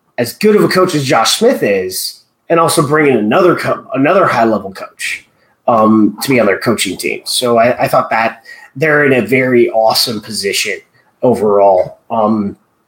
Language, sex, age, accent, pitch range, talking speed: English, male, 30-49, American, 120-160 Hz, 175 wpm